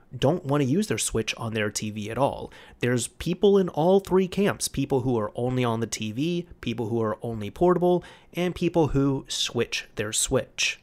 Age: 30-49